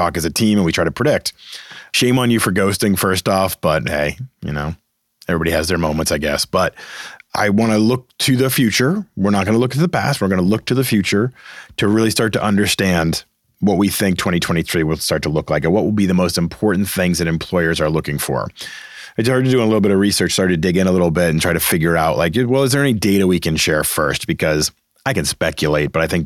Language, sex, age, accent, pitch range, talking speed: English, male, 30-49, American, 85-110 Hz, 260 wpm